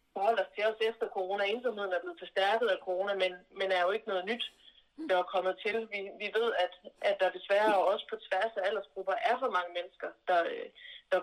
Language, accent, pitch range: Danish, native, 180-220 Hz